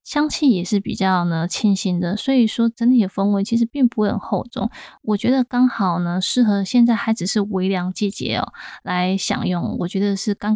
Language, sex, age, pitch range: Chinese, female, 20-39, 195-235 Hz